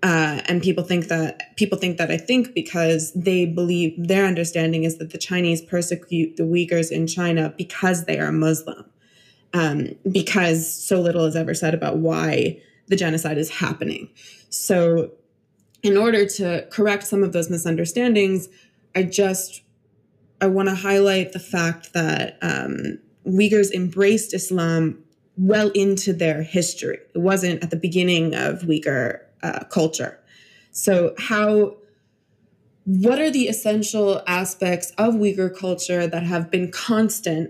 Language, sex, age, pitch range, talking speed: English, female, 20-39, 165-195 Hz, 145 wpm